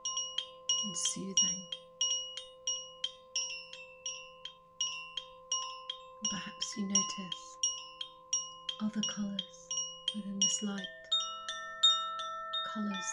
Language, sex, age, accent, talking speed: English, female, 30-49, British, 50 wpm